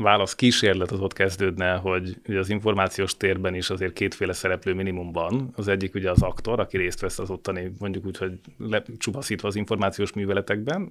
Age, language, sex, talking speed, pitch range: 30-49, Hungarian, male, 175 wpm, 90-105 Hz